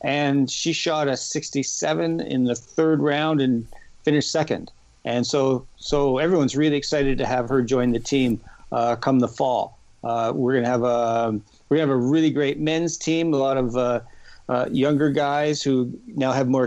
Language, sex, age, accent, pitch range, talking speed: English, male, 50-69, American, 125-160 Hz, 185 wpm